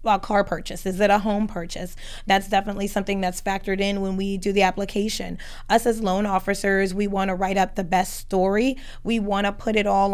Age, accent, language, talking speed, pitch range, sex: 20-39, American, English, 215 wpm, 190-210 Hz, female